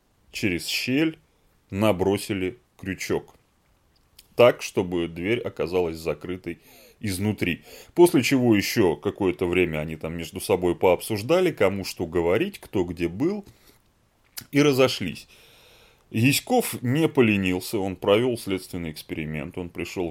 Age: 30-49